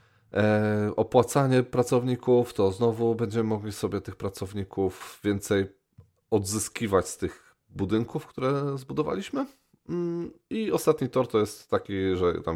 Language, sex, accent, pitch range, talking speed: Polish, male, native, 90-115 Hz, 115 wpm